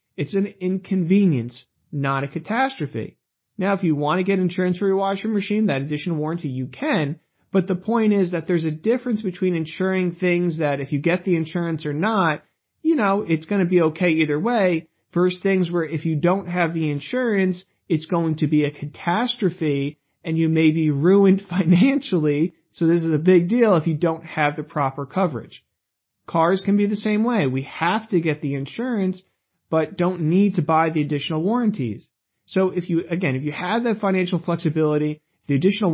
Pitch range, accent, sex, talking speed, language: 155-195 Hz, American, male, 195 wpm, English